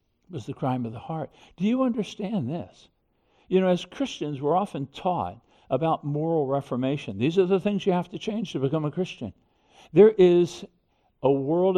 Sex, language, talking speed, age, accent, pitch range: male, English, 185 wpm, 60-79, American, 130-180 Hz